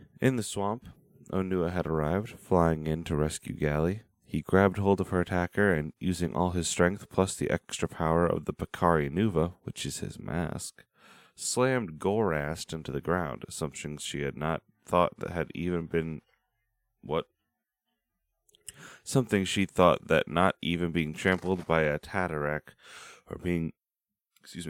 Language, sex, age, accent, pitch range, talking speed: English, male, 30-49, American, 80-95 Hz, 155 wpm